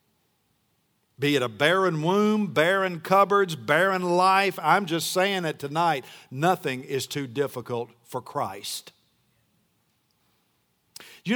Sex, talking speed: male, 110 wpm